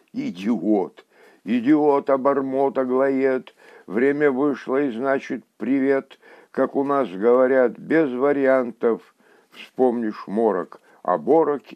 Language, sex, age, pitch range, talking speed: Russian, male, 60-79, 120-150 Hz, 90 wpm